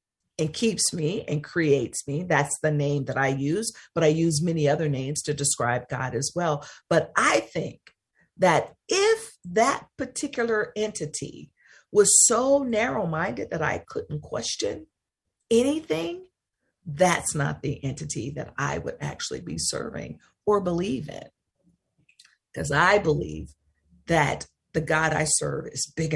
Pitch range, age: 145-180 Hz, 50-69